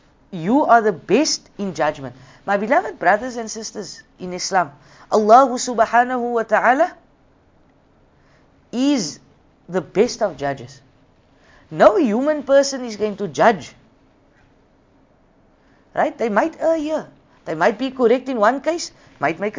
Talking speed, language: 130 wpm, English